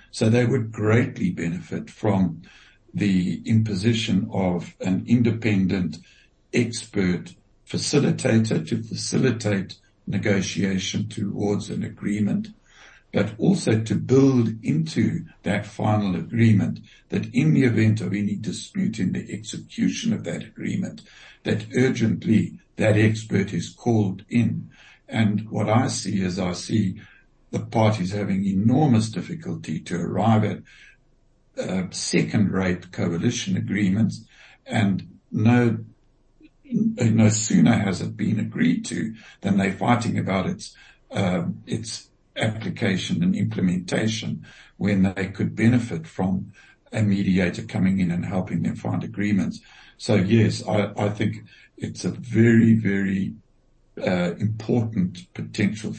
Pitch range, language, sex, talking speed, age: 95-115 Hz, English, male, 120 wpm, 60-79